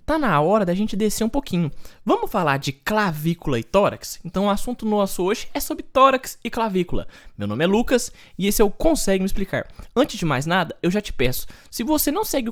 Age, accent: 20-39, Brazilian